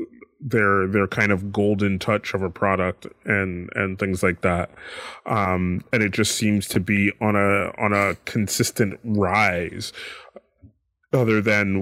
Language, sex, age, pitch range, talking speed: English, male, 30-49, 100-125 Hz, 145 wpm